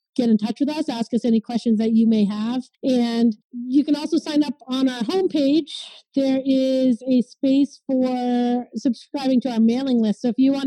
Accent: American